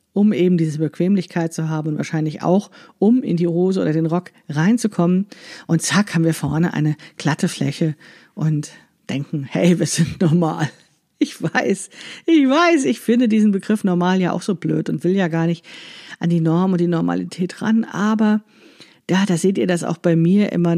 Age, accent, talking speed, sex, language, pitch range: 50-69, German, 195 wpm, female, German, 165-200 Hz